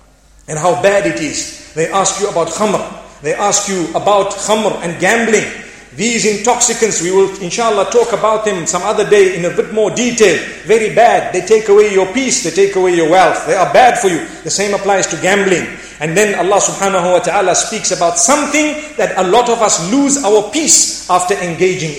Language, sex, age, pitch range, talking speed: English, male, 40-59, 195-275 Hz, 200 wpm